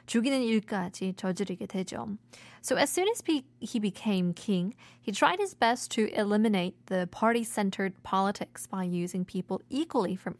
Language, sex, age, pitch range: Korean, female, 20-39, 190-250 Hz